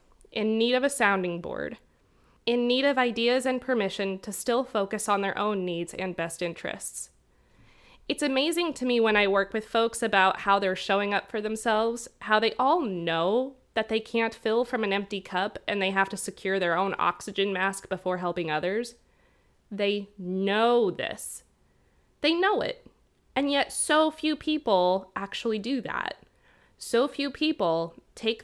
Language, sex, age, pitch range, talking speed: English, female, 20-39, 190-240 Hz, 170 wpm